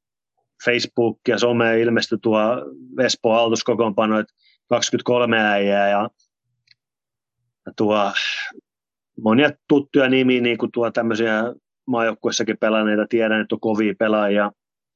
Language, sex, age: Finnish, male, 30-49